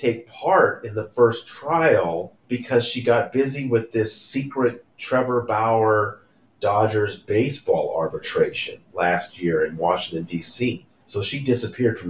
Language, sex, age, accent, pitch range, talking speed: English, male, 40-59, American, 100-145 Hz, 135 wpm